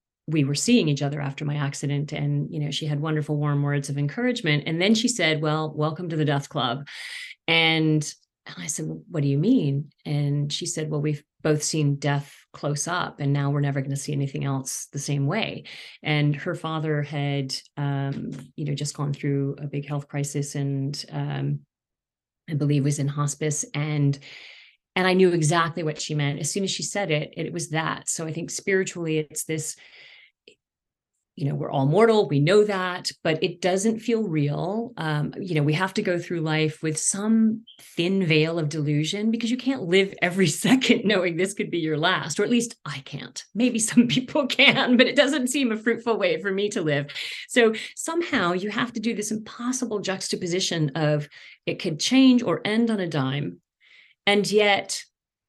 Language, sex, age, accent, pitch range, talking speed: English, female, 30-49, American, 145-200 Hz, 195 wpm